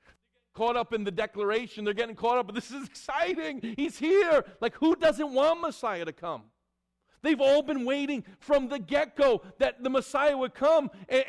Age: 50-69